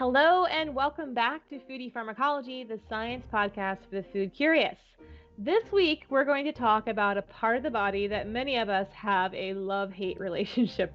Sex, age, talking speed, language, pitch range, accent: female, 20-39, 185 wpm, English, 195-260 Hz, American